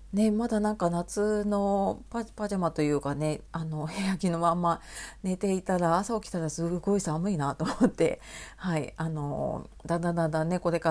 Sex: female